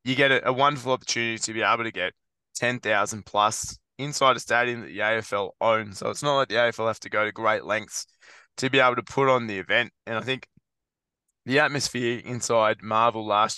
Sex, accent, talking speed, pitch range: male, Australian, 210 wpm, 110-130 Hz